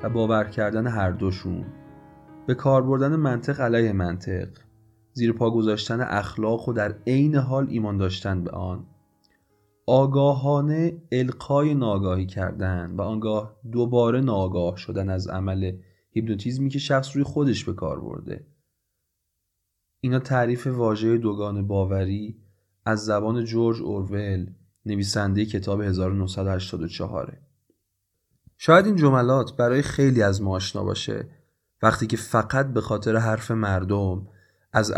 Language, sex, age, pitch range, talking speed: Persian, male, 30-49, 95-125 Hz, 120 wpm